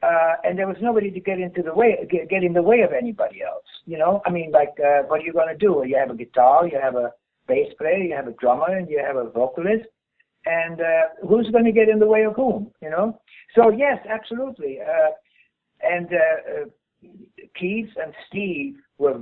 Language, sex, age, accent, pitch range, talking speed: English, male, 60-79, American, 145-230 Hz, 220 wpm